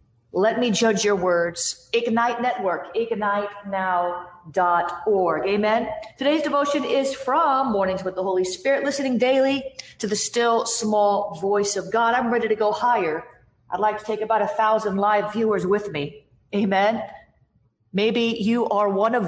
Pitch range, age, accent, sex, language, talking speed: 195-255 Hz, 40-59, American, female, English, 150 wpm